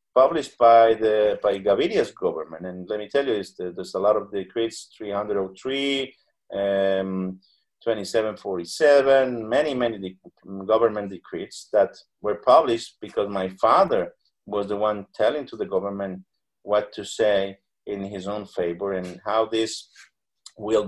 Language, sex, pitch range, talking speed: English, male, 95-130 Hz, 140 wpm